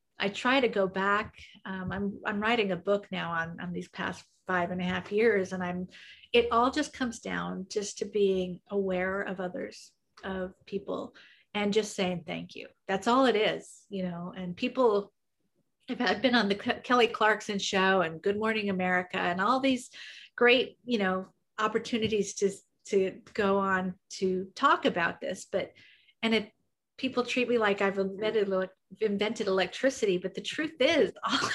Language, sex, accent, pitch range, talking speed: English, female, American, 185-220 Hz, 180 wpm